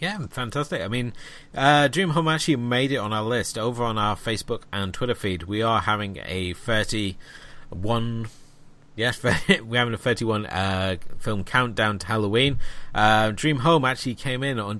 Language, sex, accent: English, male, British